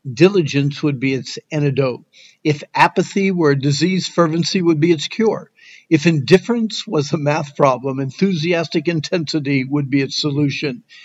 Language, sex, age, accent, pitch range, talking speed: English, male, 60-79, American, 140-170 Hz, 145 wpm